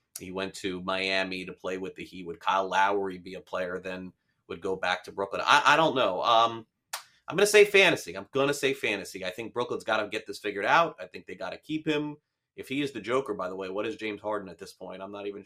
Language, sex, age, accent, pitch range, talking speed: English, male, 30-49, American, 100-130 Hz, 270 wpm